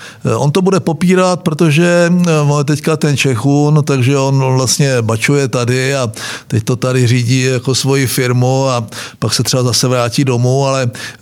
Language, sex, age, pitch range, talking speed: Czech, male, 50-69, 130-165 Hz, 160 wpm